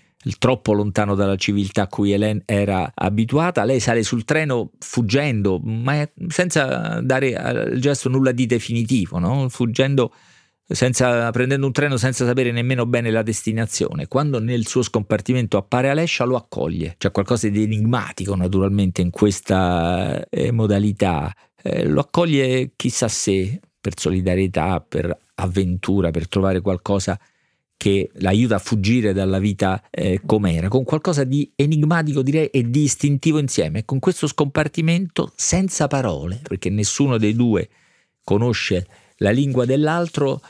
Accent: native